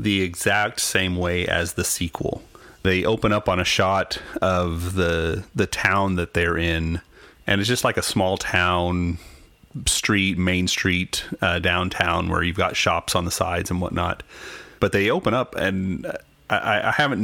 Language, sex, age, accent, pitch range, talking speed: English, male, 30-49, American, 90-100 Hz, 170 wpm